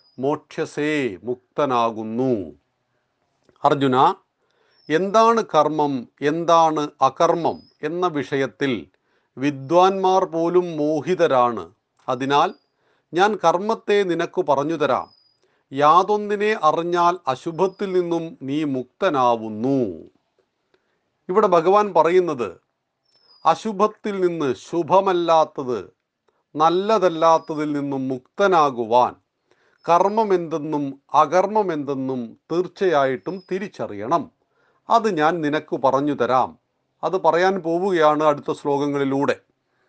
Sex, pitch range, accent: male, 140-185 Hz, native